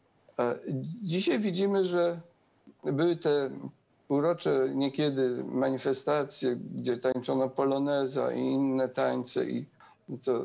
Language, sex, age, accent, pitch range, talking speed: English, male, 50-69, Polish, 125-175 Hz, 90 wpm